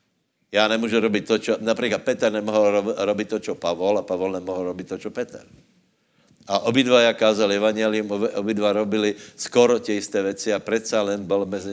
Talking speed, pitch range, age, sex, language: 190 wpm, 95-110 Hz, 60-79, male, Slovak